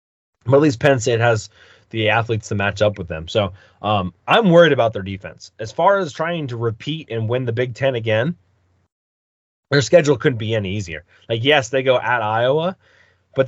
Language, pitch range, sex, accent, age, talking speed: English, 105-135 Hz, male, American, 20-39, 200 wpm